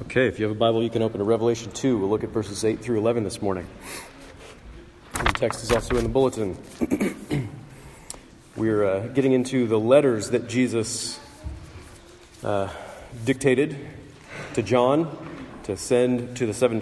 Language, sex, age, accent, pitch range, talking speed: English, male, 40-59, American, 100-125 Hz, 165 wpm